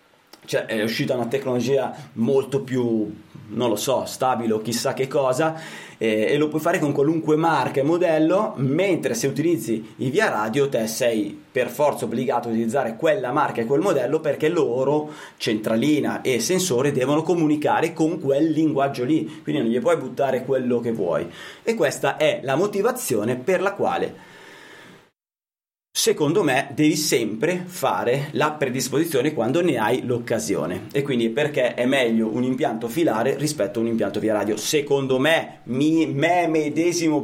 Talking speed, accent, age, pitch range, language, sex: 160 wpm, native, 30-49, 125-160 Hz, Italian, male